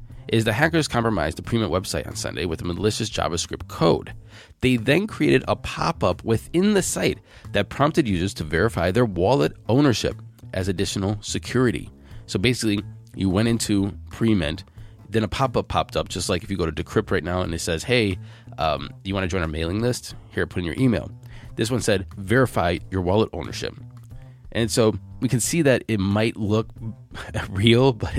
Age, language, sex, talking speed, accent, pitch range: 20-39, English, male, 185 wpm, American, 95-120 Hz